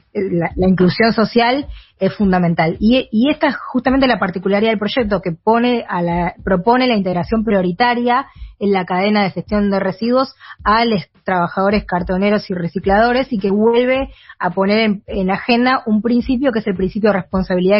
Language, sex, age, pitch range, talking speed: Spanish, female, 20-39, 190-235 Hz, 175 wpm